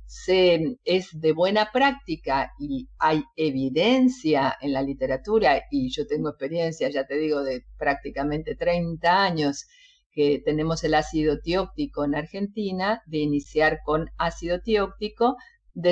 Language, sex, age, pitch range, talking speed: Spanish, female, 50-69, 150-215 Hz, 130 wpm